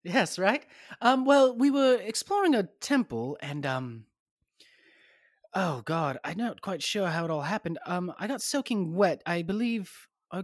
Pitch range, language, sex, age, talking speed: 135-200 Hz, English, male, 30-49, 165 wpm